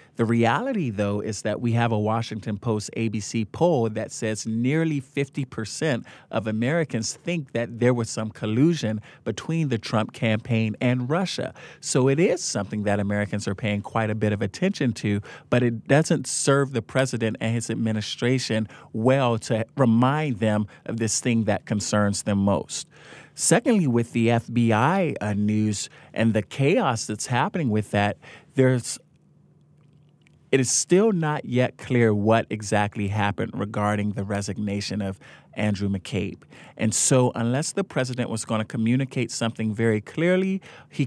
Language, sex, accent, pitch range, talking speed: English, male, American, 110-135 Hz, 155 wpm